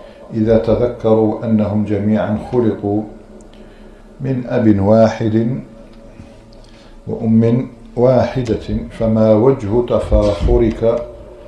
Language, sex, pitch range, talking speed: Arabic, male, 105-120 Hz, 70 wpm